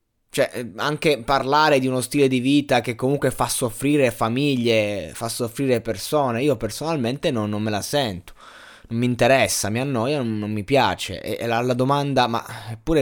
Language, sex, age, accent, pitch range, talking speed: Italian, male, 20-39, native, 110-135 Hz, 175 wpm